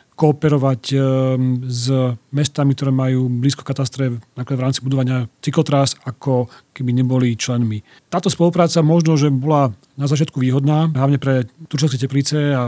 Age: 40-59